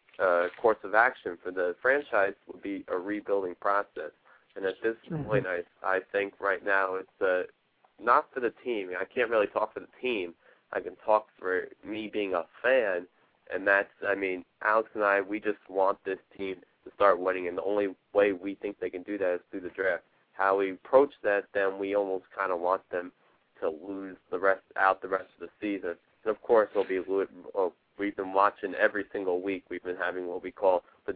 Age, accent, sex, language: 20-39, American, male, English